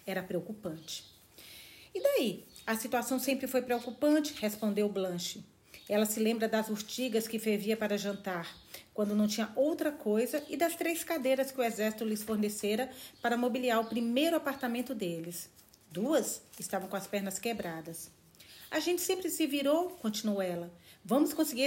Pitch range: 195-245 Hz